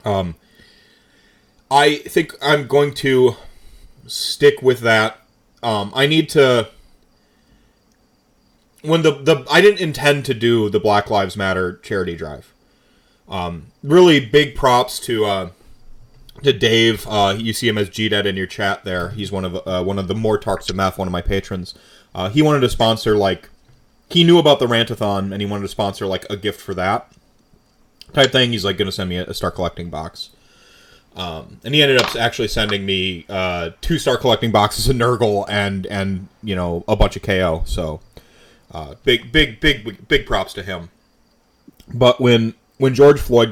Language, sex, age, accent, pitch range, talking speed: English, male, 30-49, American, 90-125 Hz, 180 wpm